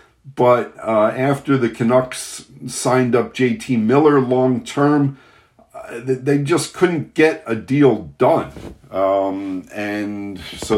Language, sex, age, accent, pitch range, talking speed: English, male, 50-69, American, 105-135 Hz, 110 wpm